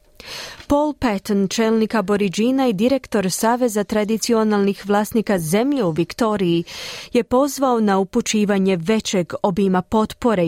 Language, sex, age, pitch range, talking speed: Croatian, female, 30-49, 195-245 Hz, 110 wpm